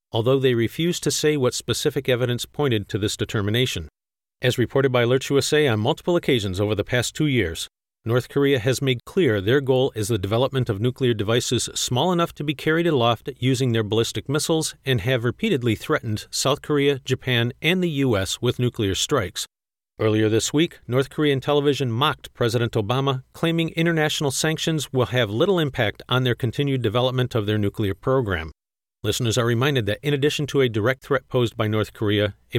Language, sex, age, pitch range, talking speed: English, male, 40-59, 110-145 Hz, 180 wpm